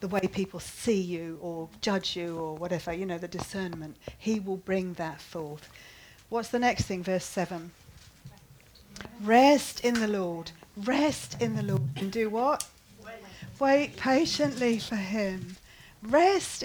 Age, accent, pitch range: 40-59, British, 180-295 Hz